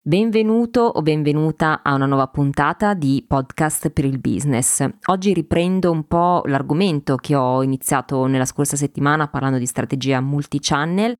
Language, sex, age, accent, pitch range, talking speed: Italian, female, 20-39, native, 135-165 Hz, 145 wpm